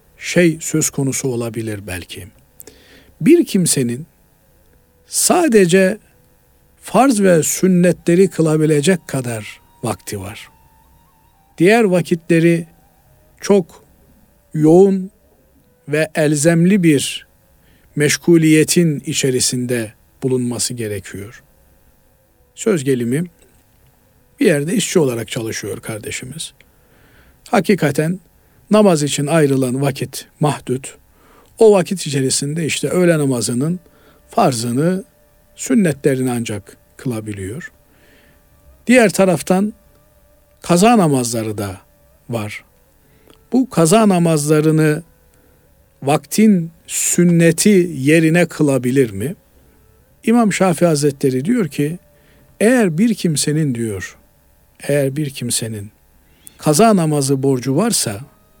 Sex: male